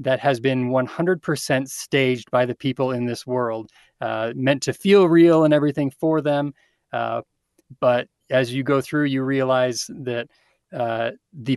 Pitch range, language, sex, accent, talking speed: 125-145 Hz, English, male, American, 160 wpm